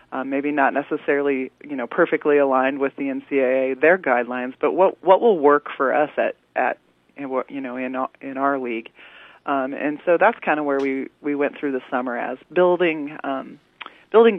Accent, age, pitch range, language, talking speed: American, 30-49, 125-155 Hz, English, 190 wpm